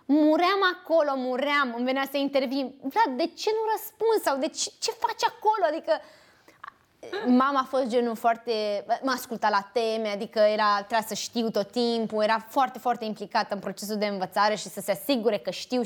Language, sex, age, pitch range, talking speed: Romanian, female, 20-39, 210-275 Hz, 185 wpm